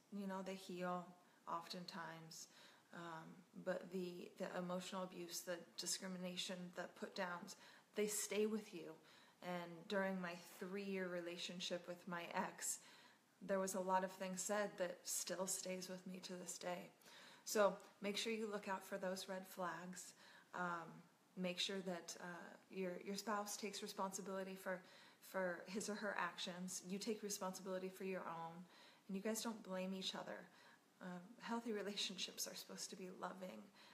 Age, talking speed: 20-39, 160 wpm